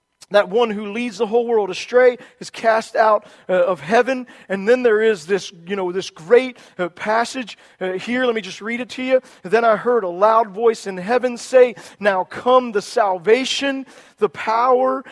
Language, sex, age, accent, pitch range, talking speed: English, male, 40-59, American, 205-260 Hz, 185 wpm